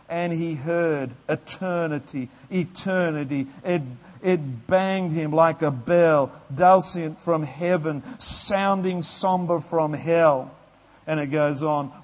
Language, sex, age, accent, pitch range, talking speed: English, male, 50-69, Australian, 160-190 Hz, 115 wpm